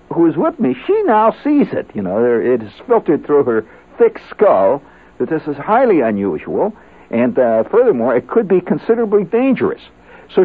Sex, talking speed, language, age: male, 180 wpm, English, 60-79